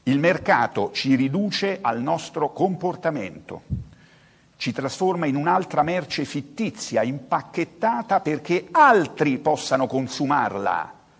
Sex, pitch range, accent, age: male, 140-195 Hz, native, 50-69